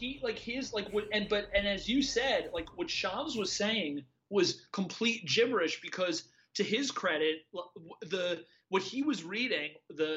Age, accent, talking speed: 30-49, American, 170 wpm